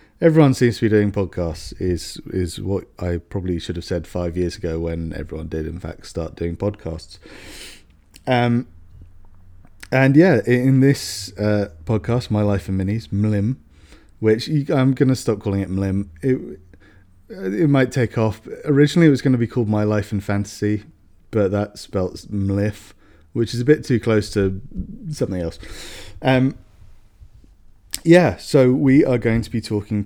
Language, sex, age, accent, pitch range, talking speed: English, male, 30-49, British, 95-120 Hz, 165 wpm